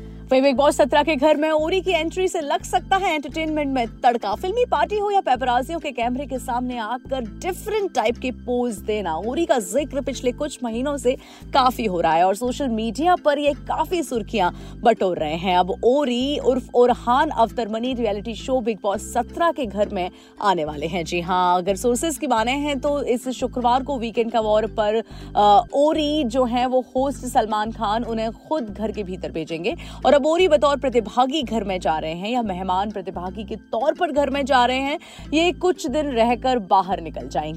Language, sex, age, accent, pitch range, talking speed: Hindi, female, 30-49, native, 210-290 Hz, 155 wpm